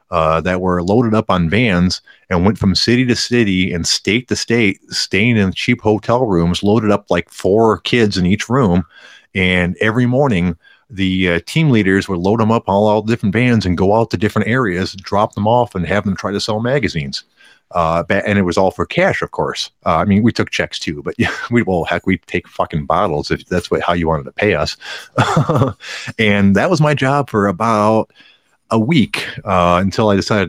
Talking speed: 215 wpm